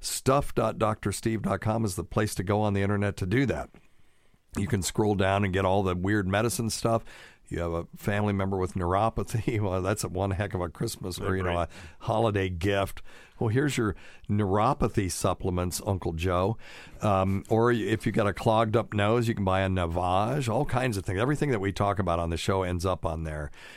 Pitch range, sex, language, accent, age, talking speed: 90-110 Hz, male, English, American, 50-69, 200 wpm